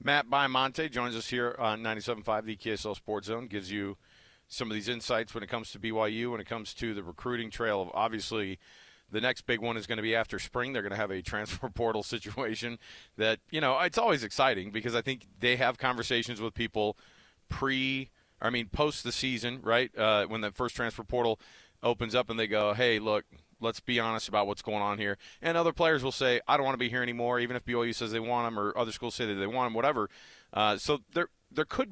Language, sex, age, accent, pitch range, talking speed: English, male, 40-59, American, 105-125 Hz, 235 wpm